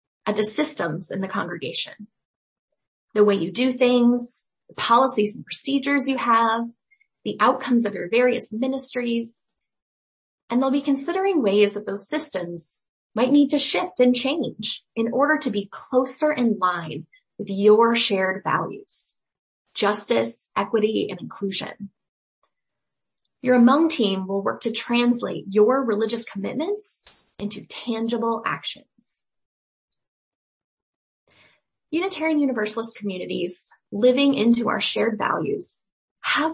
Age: 20-39